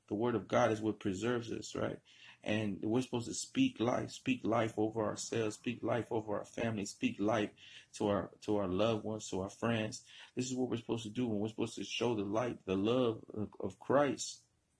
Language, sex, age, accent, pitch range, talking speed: English, male, 30-49, American, 105-125 Hz, 215 wpm